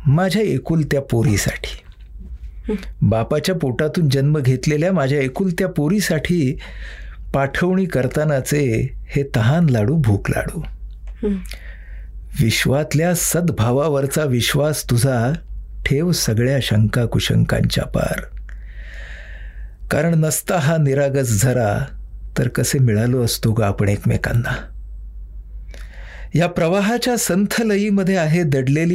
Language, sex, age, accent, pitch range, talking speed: Marathi, male, 60-79, native, 105-155 Hz, 80 wpm